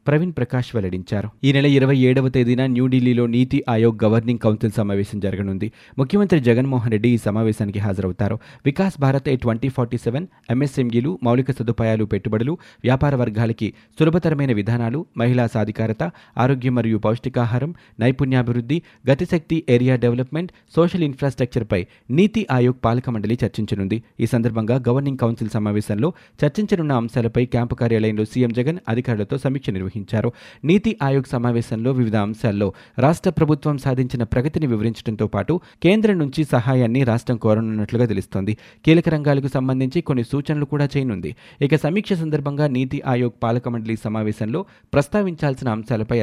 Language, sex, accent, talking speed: Telugu, male, native, 110 wpm